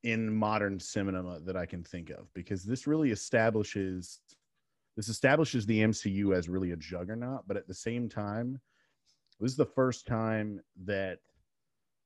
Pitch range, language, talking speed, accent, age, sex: 90-110 Hz, English, 155 wpm, American, 30-49, male